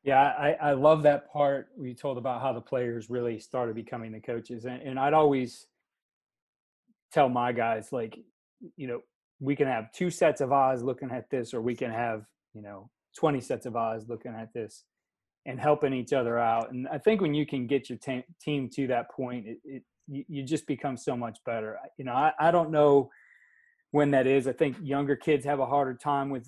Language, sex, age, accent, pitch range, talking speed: English, male, 30-49, American, 120-140 Hz, 220 wpm